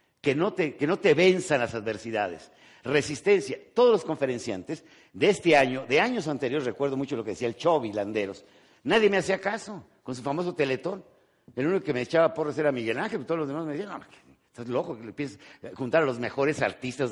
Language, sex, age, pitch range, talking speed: Spanish, male, 50-69, 125-175 Hz, 210 wpm